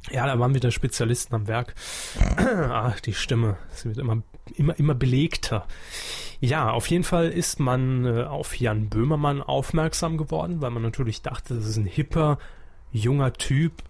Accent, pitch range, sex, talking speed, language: German, 115-145 Hz, male, 160 wpm, German